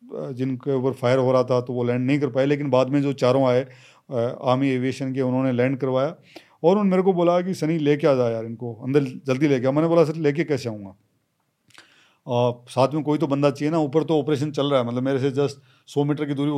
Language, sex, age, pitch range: Hindi, male, 40-59, 125-150 Hz